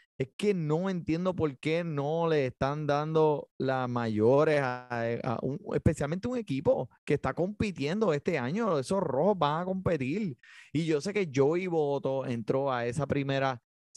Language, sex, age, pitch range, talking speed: Spanish, male, 20-39, 120-155 Hz, 155 wpm